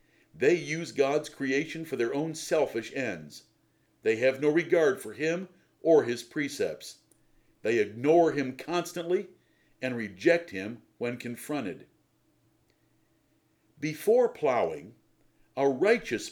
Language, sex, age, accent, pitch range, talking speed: English, male, 50-69, American, 130-170 Hz, 115 wpm